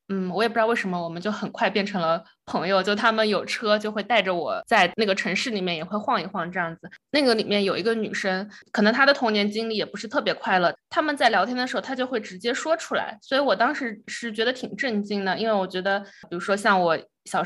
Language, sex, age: Chinese, female, 20-39